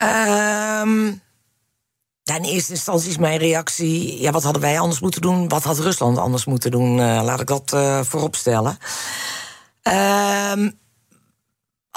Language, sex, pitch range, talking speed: Dutch, female, 125-185 Hz, 130 wpm